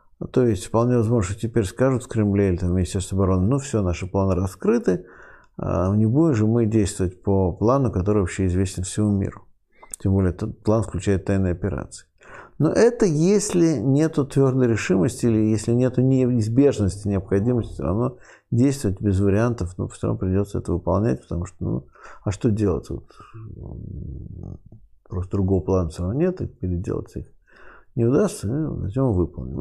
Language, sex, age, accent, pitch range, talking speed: Russian, male, 50-69, native, 95-120 Hz, 160 wpm